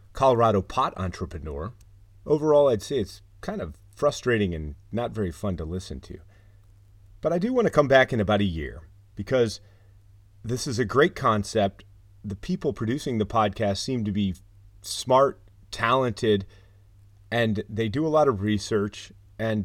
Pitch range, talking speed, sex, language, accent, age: 100-115 Hz, 160 wpm, male, English, American, 30-49